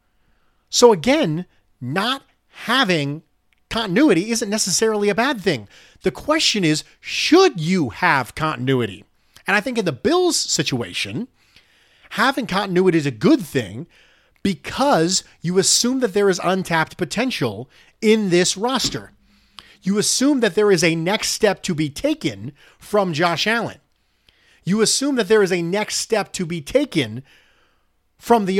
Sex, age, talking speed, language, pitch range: male, 40-59, 145 wpm, English, 135-215 Hz